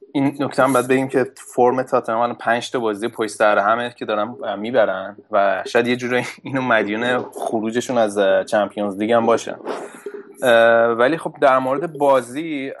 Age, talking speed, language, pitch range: 20-39, 160 wpm, Persian, 105-125 Hz